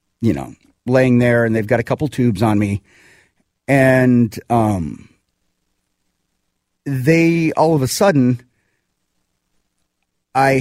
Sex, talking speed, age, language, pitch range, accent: male, 115 wpm, 40-59, English, 115-160 Hz, American